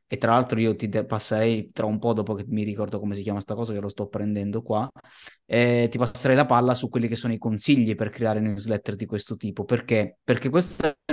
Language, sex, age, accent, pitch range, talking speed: Italian, male, 20-39, native, 115-150 Hz, 230 wpm